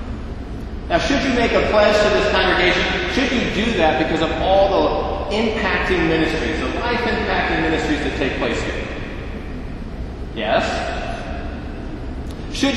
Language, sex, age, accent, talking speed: English, male, 40-59, American, 130 wpm